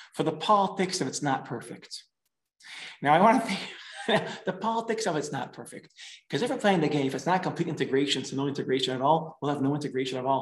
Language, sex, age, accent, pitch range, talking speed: English, male, 30-49, American, 140-195 Hz, 230 wpm